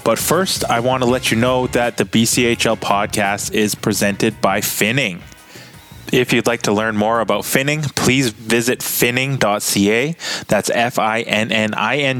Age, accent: 20-39, American